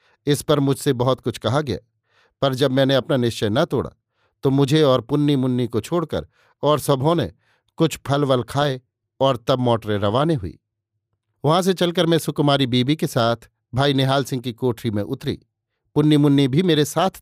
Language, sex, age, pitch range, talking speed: Hindi, male, 50-69, 115-145 Hz, 185 wpm